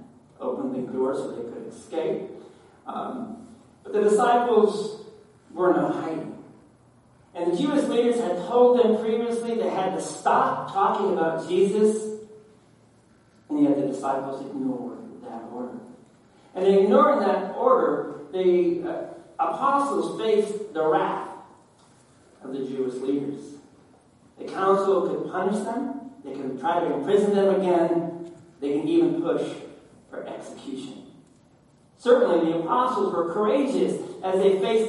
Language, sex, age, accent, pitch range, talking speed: English, male, 40-59, American, 145-235 Hz, 130 wpm